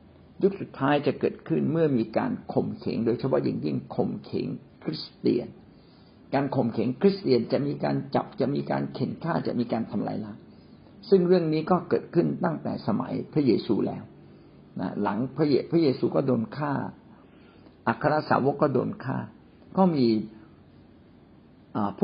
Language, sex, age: Thai, male, 60-79